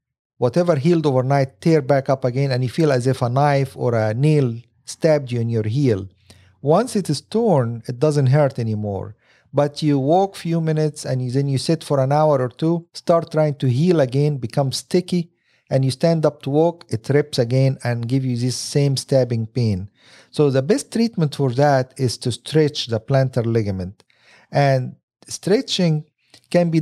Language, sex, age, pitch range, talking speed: English, male, 50-69, 125-155 Hz, 190 wpm